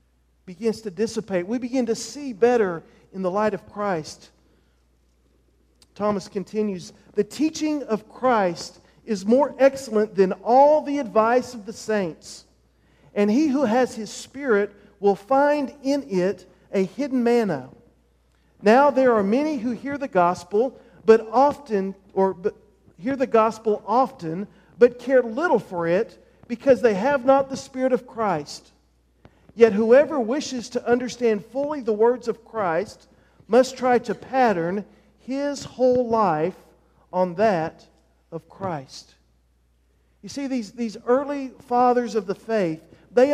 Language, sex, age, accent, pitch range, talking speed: English, male, 40-59, American, 185-255 Hz, 140 wpm